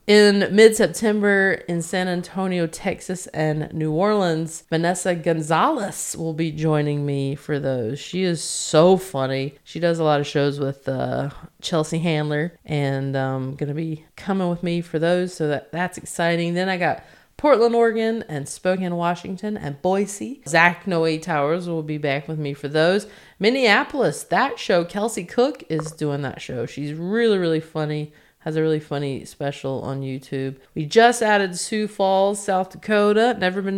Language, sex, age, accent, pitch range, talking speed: English, female, 30-49, American, 145-195 Hz, 165 wpm